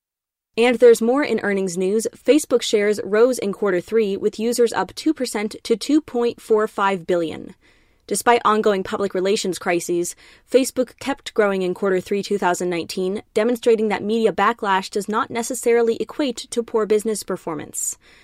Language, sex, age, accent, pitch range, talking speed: English, female, 20-39, American, 195-235 Hz, 145 wpm